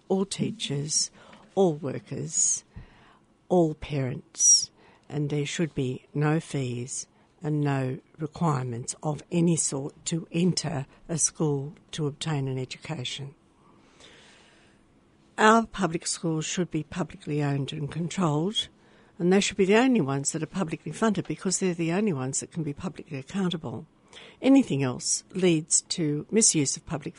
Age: 60-79